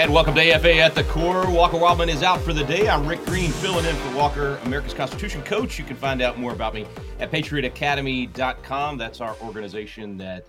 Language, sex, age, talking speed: English, male, 30-49, 210 wpm